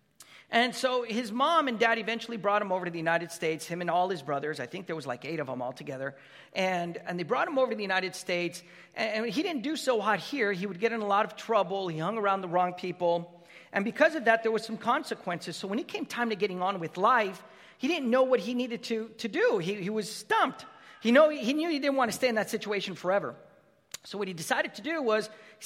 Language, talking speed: English, 260 wpm